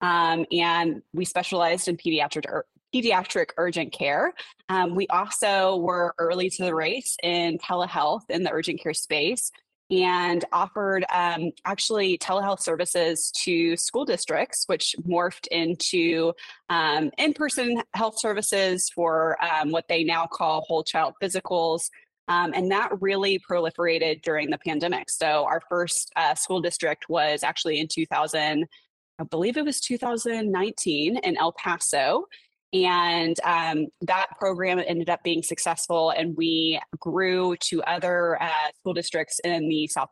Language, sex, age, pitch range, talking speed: English, female, 20-39, 165-185 Hz, 140 wpm